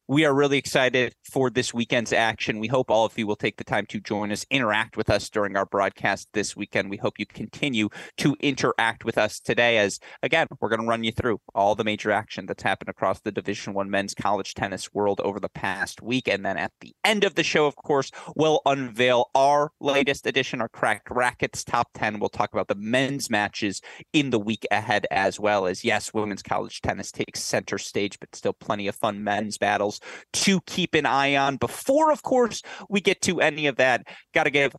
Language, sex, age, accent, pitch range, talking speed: English, male, 30-49, American, 110-140 Hz, 220 wpm